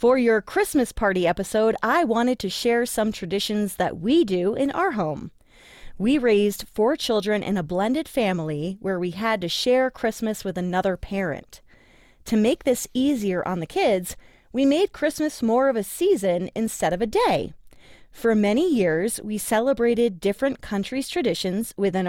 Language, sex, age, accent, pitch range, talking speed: English, female, 30-49, American, 195-260 Hz, 165 wpm